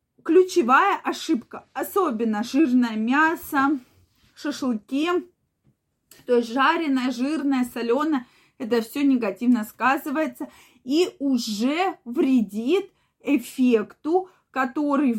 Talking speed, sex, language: 80 wpm, female, Russian